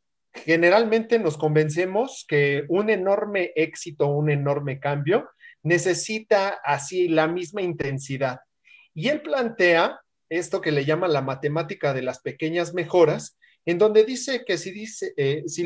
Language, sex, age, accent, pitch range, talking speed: Spanish, male, 40-59, Mexican, 150-210 Hz, 140 wpm